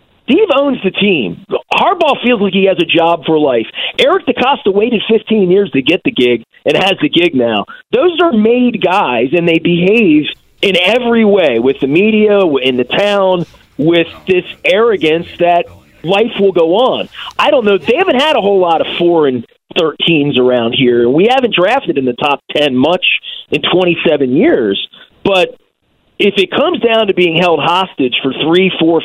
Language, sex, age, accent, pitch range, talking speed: English, male, 40-59, American, 150-200 Hz, 185 wpm